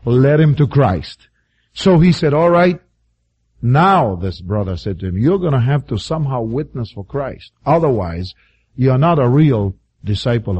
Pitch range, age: 110-175 Hz, 50-69